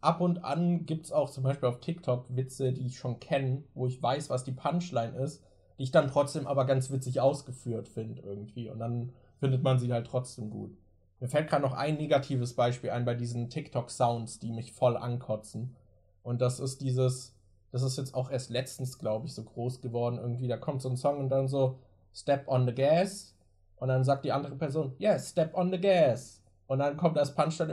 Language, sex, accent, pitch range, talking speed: German, male, German, 120-160 Hz, 215 wpm